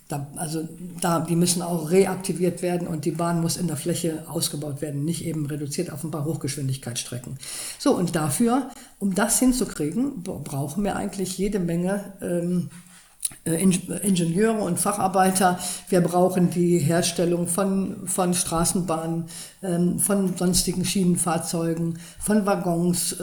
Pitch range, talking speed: 165-195 Hz, 130 wpm